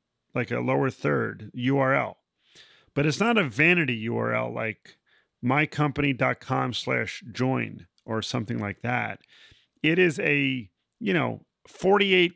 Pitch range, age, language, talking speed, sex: 110-165 Hz, 40-59, English, 115 wpm, male